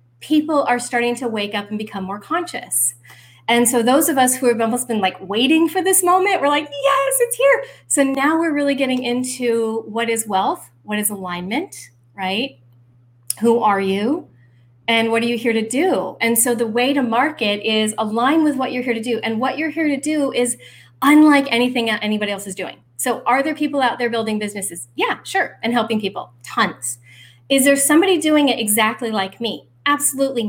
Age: 30-49